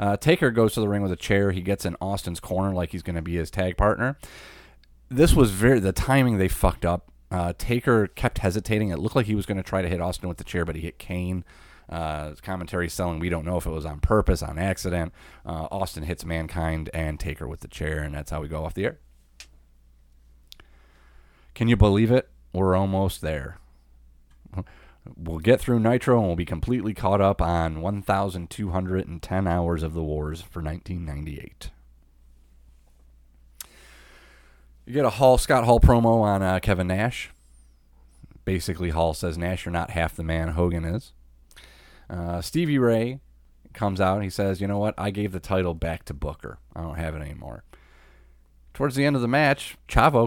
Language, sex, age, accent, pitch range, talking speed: English, male, 30-49, American, 75-100 Hz, 190 wpm